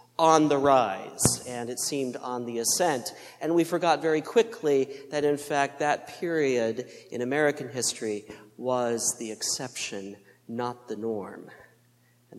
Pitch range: 120-150 Hz